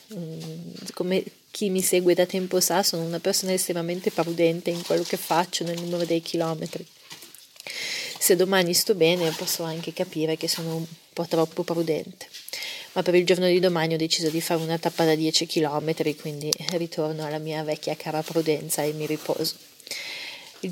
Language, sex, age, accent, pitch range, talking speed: Italian, female, 30-49, native, 160-190 Hz, 170 wpm